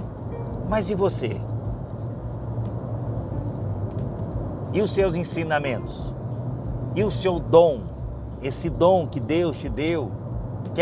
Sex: male